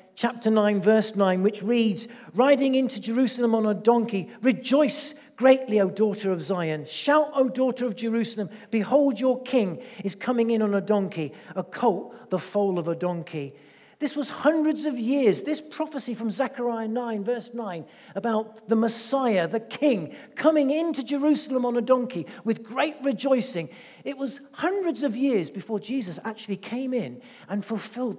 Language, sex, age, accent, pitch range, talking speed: English, male, 50-69, British, 210-270 Hz, 165 wpm